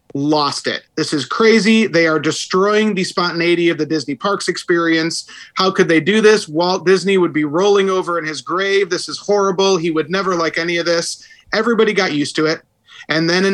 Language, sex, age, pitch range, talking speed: English, male, 30-49, 155-190 Hz, 210 wpm